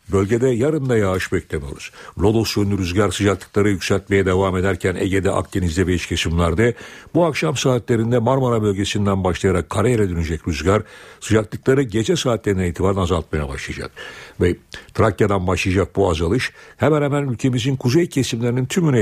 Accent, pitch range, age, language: native, 95-125 Hz, 60-79, Turkish